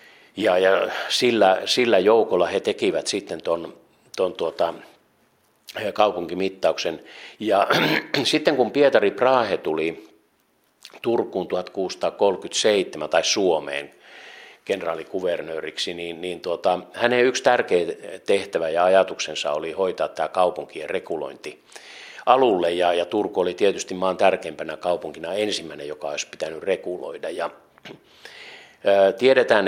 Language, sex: Finnish, male